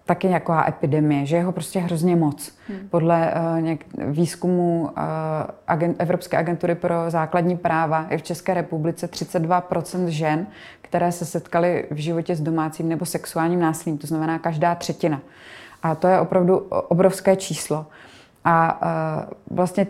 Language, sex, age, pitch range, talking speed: Czech, female, 20-39, 160-180 Hz, 150 wpm